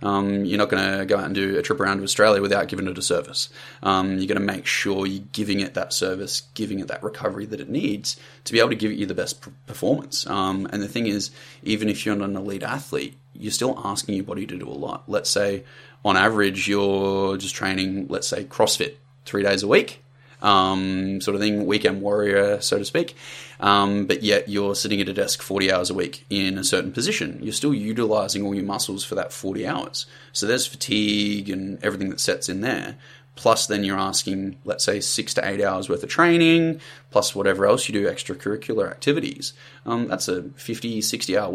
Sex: male